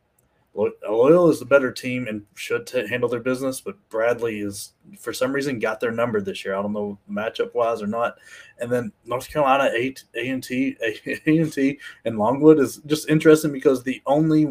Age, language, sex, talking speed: 20-39, English, male, 165 wpm